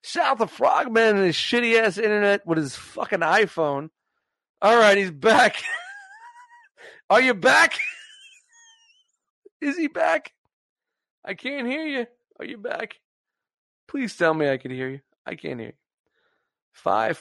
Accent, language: American, English